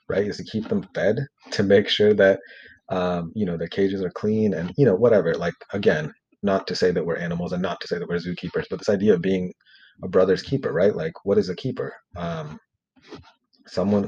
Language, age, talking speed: English, 30-49, 220 wpm